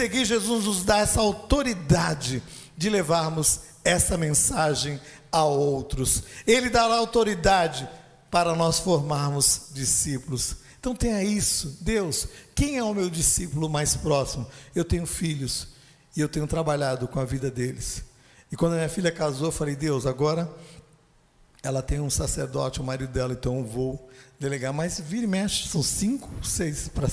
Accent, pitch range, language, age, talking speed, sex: Brazilian, 135-170 Hz, Portuguese, 60-79, 150 wpm, male